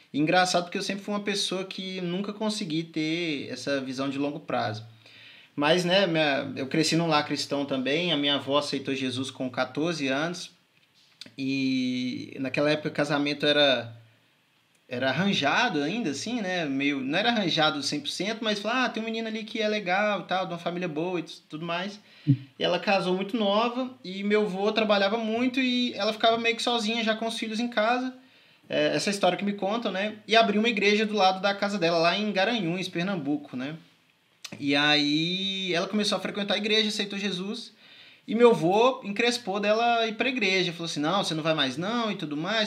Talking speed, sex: 195 wpm, male